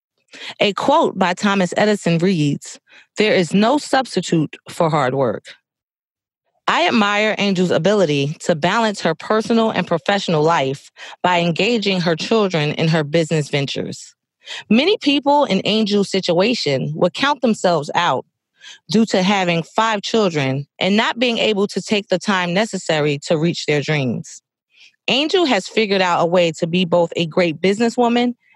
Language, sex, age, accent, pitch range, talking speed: English, female, 30-49, American, 160-220 Hz, 150 wpm